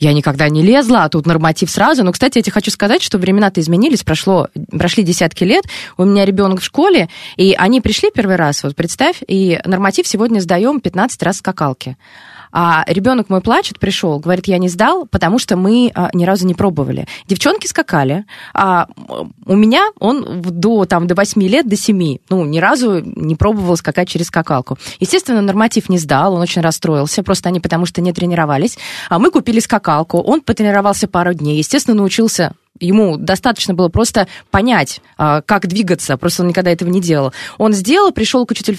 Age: 20-39